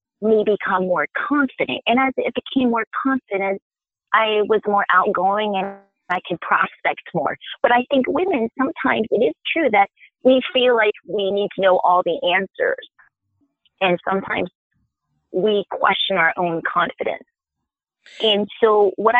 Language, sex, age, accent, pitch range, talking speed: English, female, 40-59, American, 190-265 Hz, 150 wpm